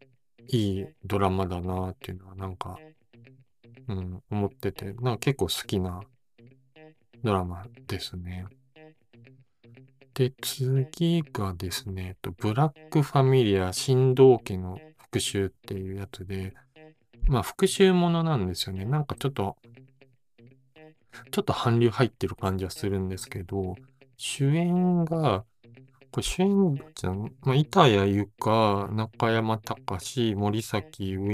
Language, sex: Japanese, male